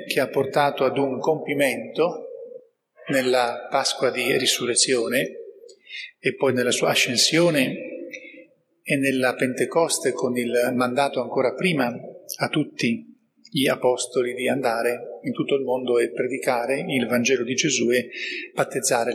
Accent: native